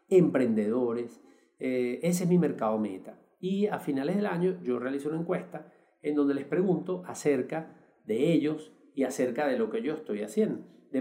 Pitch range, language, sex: 125-175 Hz, Spanish, male